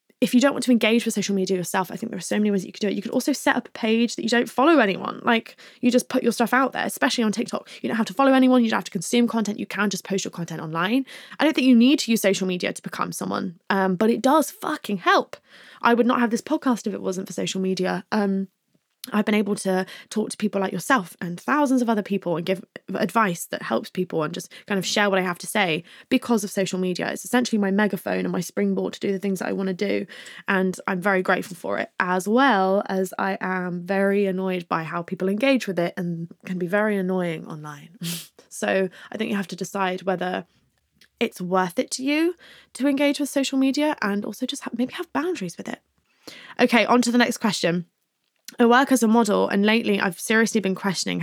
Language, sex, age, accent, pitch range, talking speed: English, female, 20-39, British, 190-235 Hz, 250 wpm